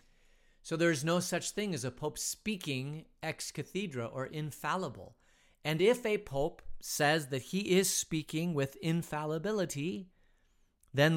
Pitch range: 110-155 Hz